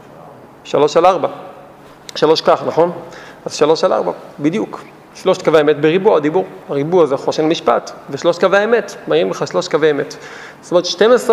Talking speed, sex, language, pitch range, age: 165 wpm, male, Hebrew, 170-225 Hz, 40-59